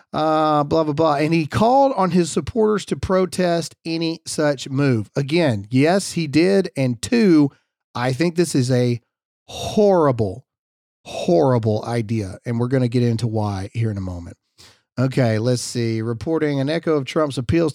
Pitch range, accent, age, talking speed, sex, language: 130-165 Hz, American, 40-59, 165 wpm, male, English